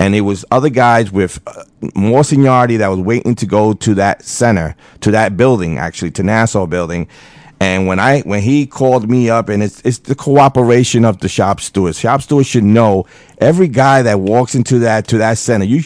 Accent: American